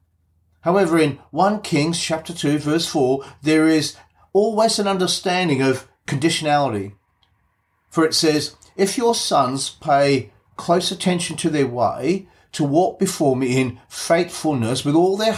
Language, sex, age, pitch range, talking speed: English, male, 40-59, 130-180 Hz, 140 wpm